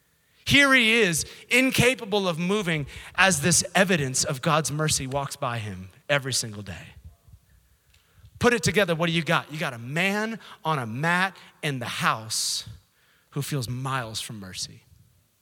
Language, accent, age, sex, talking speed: English, American, 30-49, male, 155 wpm